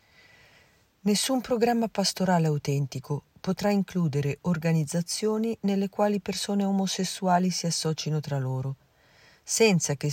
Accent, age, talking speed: native, 40-59, 100 wpm